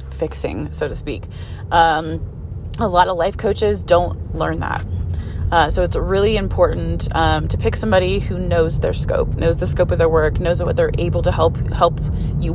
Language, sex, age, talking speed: English, female, 20-39, 190 wpm